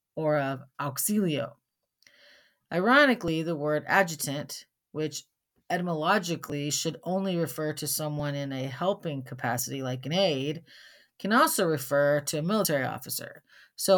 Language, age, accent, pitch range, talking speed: English, 40-59, American, 140-180 Hz, 125 wpm